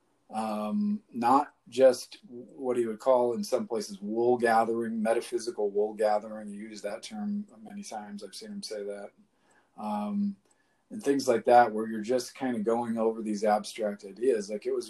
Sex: male